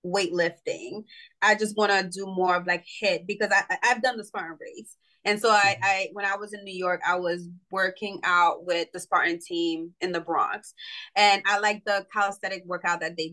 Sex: female